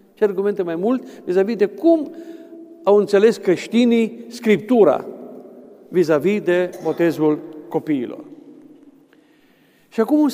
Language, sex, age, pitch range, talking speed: Romanian, male, 50-69, 180-225 Hz, 110 wpm